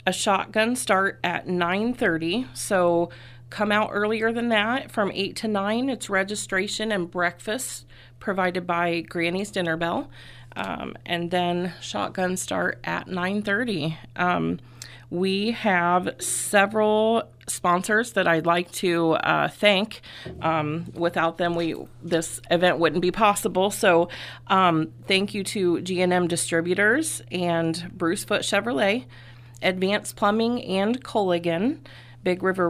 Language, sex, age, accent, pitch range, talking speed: English, female, 30-49, American, 160-210 Hz, 125 wpm